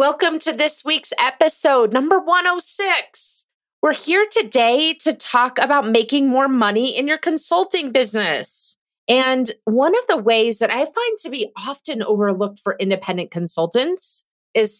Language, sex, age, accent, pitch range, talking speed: English, female, 30-49, American, 190-265 Hz, 145 wpm